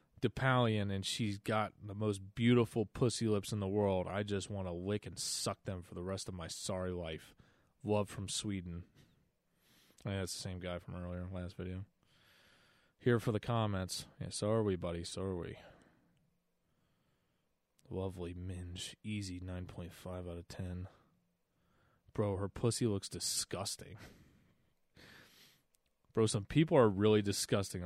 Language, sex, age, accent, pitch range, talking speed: English, male, 20-39, American, 90-110 Hz, 150 wpm